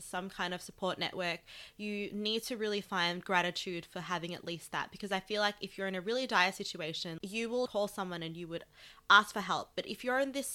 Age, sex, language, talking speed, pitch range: 20-39, female, English, 240 wpm, 175-205 Hz